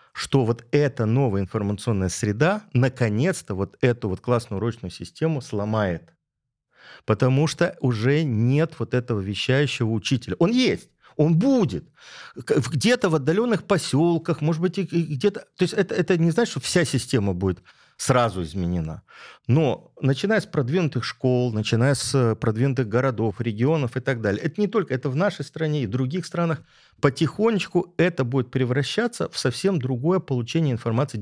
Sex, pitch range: male, 110-160 Hz